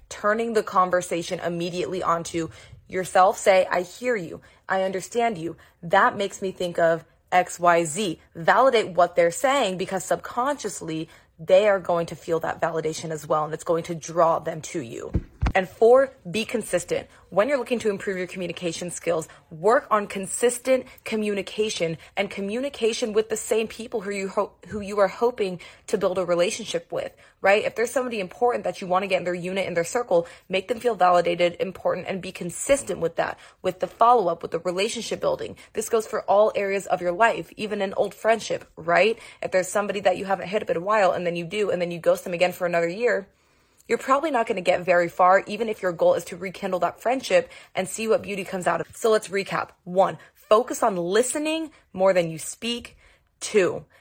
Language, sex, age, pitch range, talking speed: English, female, 20-39, 175-220 Hz, 205 wpm